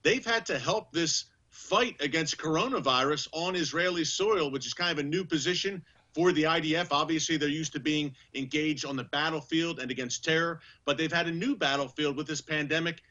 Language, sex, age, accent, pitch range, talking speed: English, male, 40-59, American, 140-170 Hz, 190 wpm